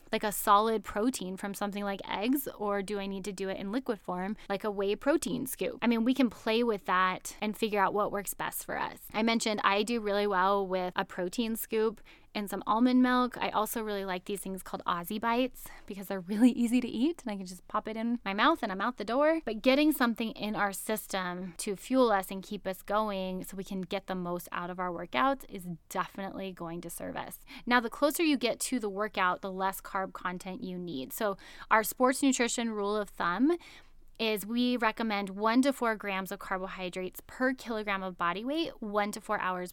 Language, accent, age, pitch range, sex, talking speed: English, American, 10-29, 190-235 Hz, female, 225 wpm